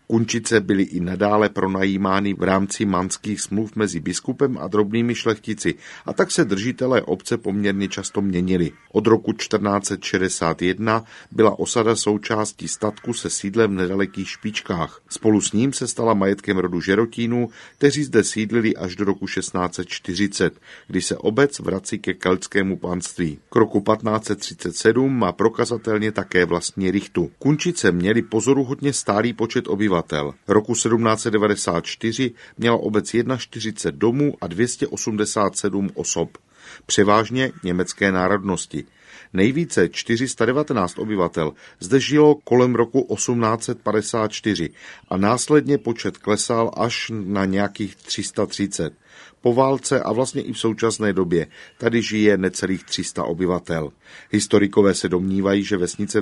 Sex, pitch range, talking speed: male, 95-120 Hz, 125 wpm